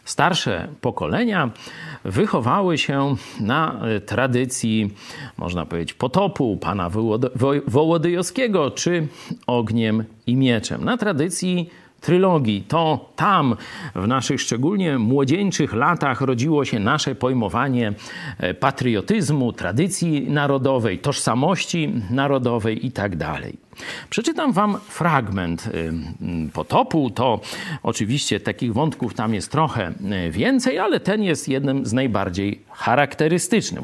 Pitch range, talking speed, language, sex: 115-180 Hz, 95 wpm, Polish, male